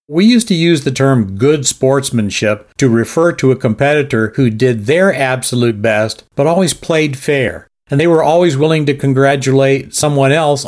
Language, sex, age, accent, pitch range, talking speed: English, male, 50-69, American, 110-140 Hz, 175 wpm